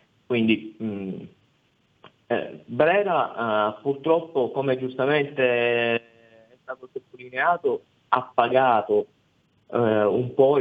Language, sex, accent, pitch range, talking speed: Italian, male, native, 110-125 Hz, 90 wpm